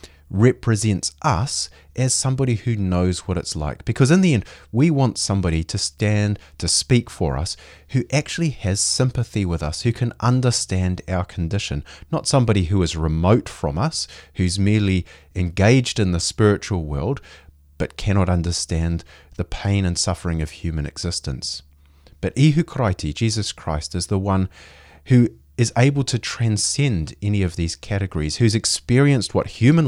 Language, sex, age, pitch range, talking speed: English, male, 30-49, 80-115 Hz, 155 wpm